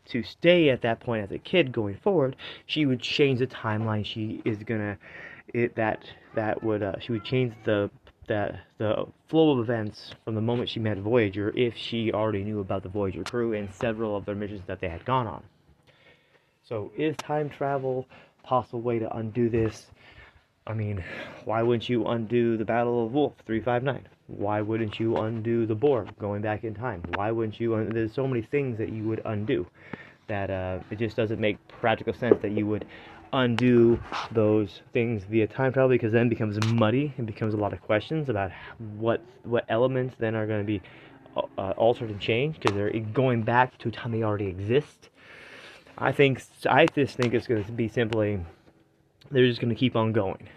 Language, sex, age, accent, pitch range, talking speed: English, male, 30-49, American, 105-125 Hz, 195 wpm